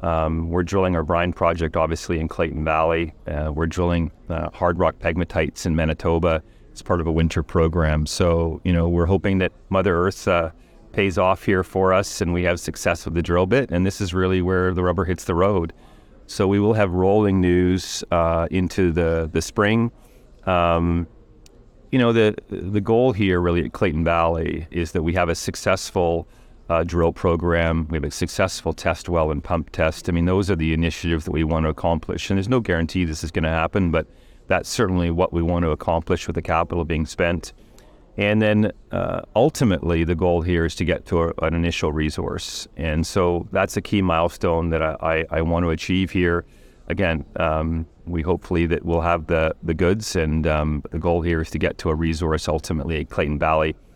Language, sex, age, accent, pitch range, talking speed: English, male, 40-59, American, 80-95 Hz, 205 wpm